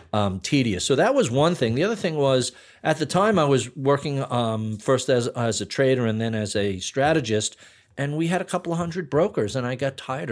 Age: 40-59